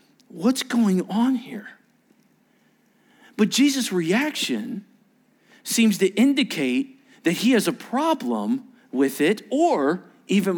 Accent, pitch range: American, 190-255 Hz